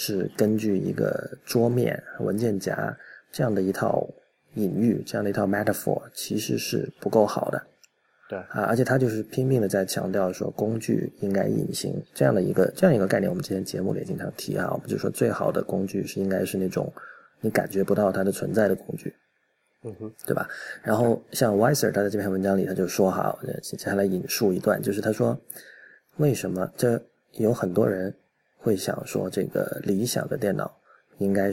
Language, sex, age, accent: Chinese, male, 20-39, native